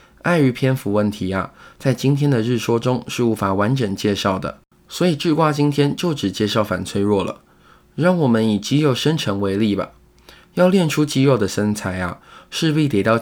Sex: male